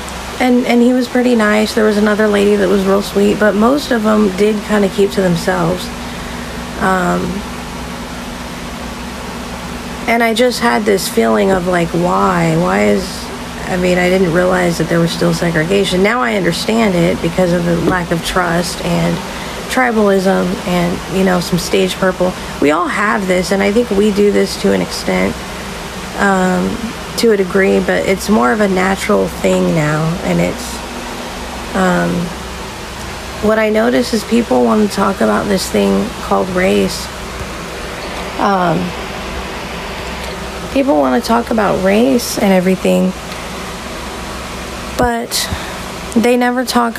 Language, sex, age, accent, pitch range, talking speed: English, female, 40-59, American, 180-215 Hz, 150 wpm